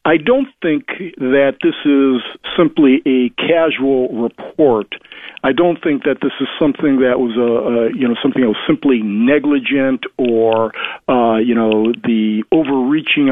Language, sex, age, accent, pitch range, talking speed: English, male, 40-59, American, 125-195 Hz, 155 wpm